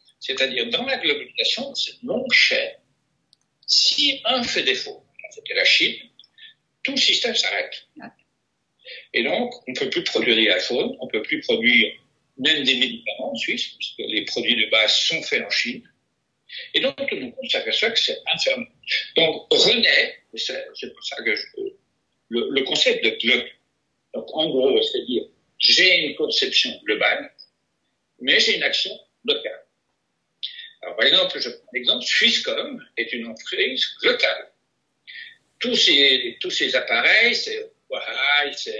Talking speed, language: 150 wpm, French